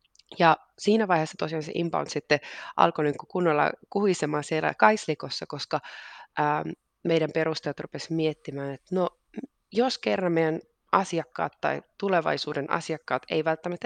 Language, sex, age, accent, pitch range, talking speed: Finnish, female, 20-39, native, 150-195 Hz, 130 wpm